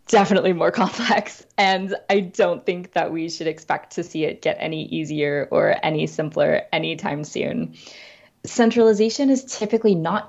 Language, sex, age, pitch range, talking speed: English, female, 20-39, 155-200 Hz, 150 wpm